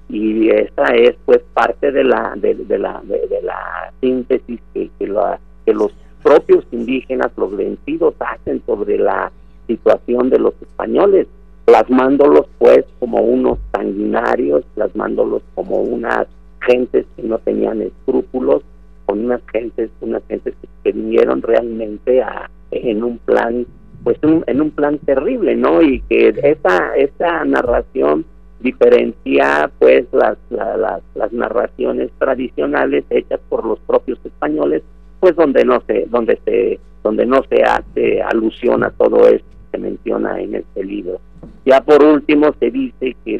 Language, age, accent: Spanish, 50-69, Mexican